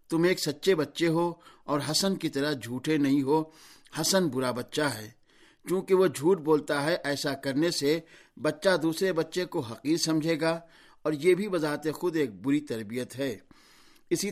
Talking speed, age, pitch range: 170 wpm, 60-79, 150-180 Hz